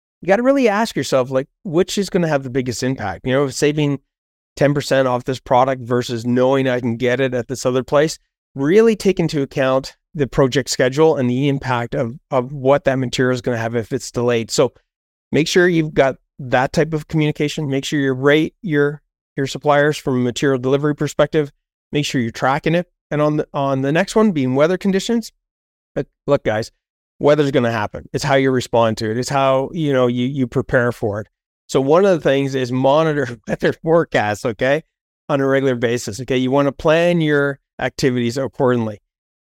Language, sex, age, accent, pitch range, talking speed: English, male, 30-49, American, 125-145 Hz, 205 wpm